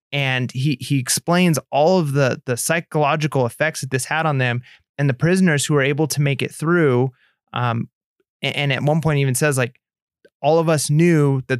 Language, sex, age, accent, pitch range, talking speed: English, male, 30-49, American, 130-155 Hz, 200 wpm